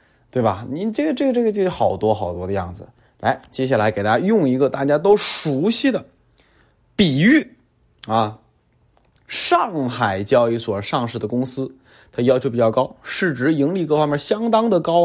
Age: 20-39